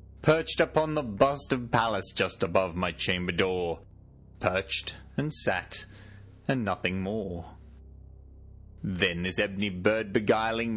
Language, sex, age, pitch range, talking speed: English, male, 30-49, 90-110 Hz, 125 wpm